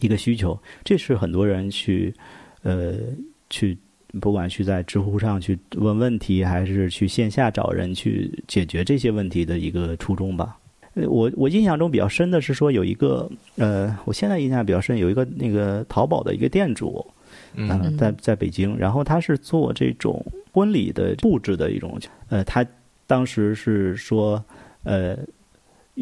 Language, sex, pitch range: Chinese, male, 95-125 Hz